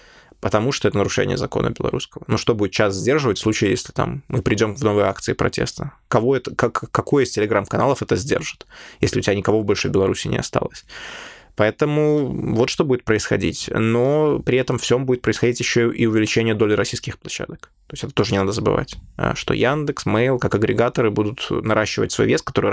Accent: native